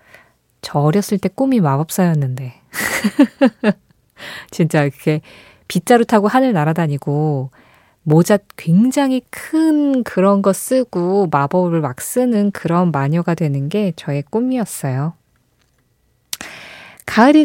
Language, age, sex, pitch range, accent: Korean, 20-39, female, 155-235 Hz, native